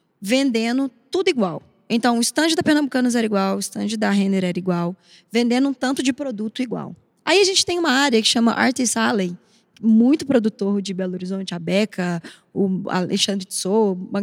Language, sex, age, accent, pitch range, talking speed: Portuguese, female, 10-29, Brazilian, 200-270 Hz, 180 wpm